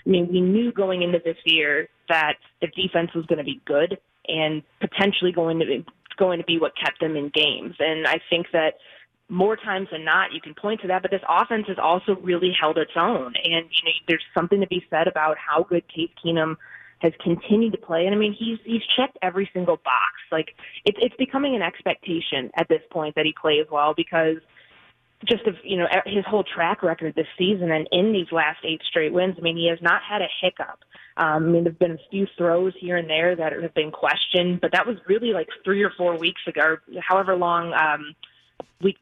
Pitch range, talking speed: 155-190 Hz, 220 wpm